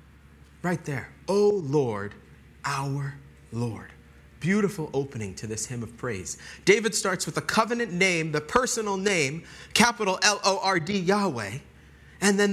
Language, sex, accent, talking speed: English, male, American, 130 wpm